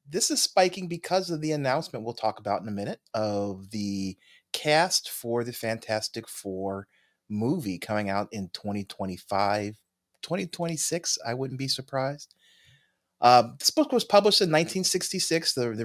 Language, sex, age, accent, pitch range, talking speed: English, male, 30-49, American, 95-140 Hz, 150 wpm